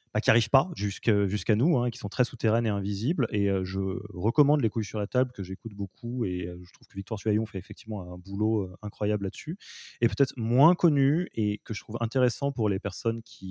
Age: 20-39